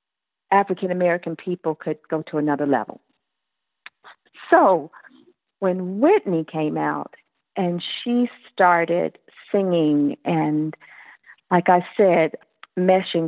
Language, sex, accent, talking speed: English, female, American, 100 wpm